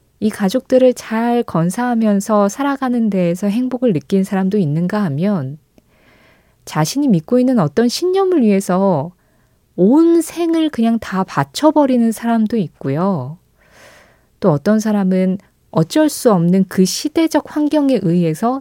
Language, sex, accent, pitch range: Korean, female, native, 180-270 Hz